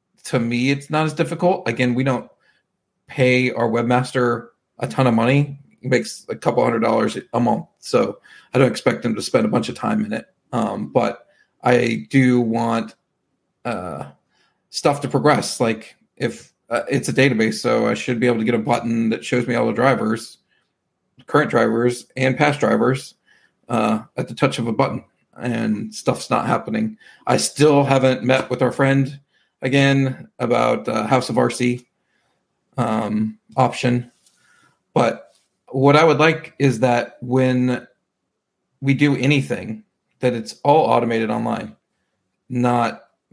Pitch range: 120-135 Hz